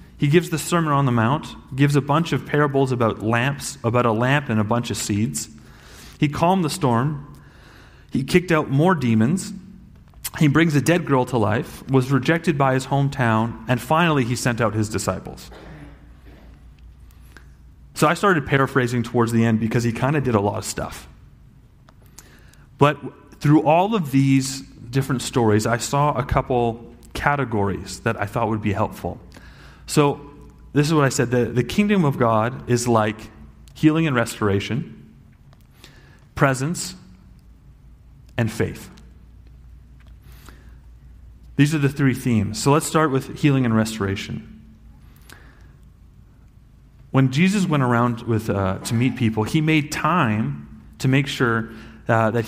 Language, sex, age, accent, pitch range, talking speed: English, male, 30-49, American, 110-145 Hz, 150 wpm